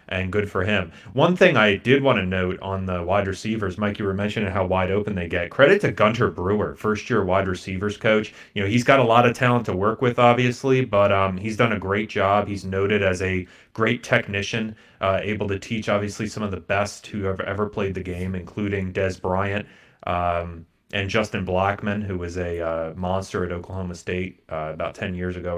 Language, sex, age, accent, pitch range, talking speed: English, male, 30-49, American, 90-105 Hz, 215 wpm